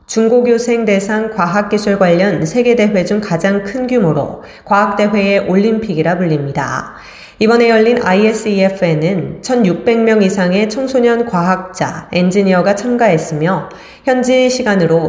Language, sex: Korean, female